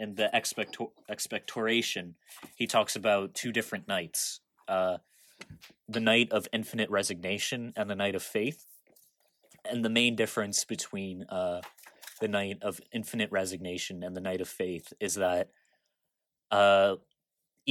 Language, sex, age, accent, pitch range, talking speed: English, male, 20-39, American, 95-115 Hz, 135 wpm